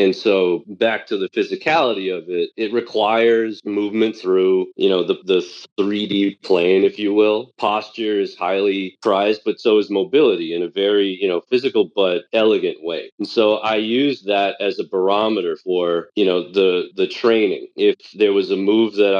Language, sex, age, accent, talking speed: English, male, 30-49, American, 180 wpm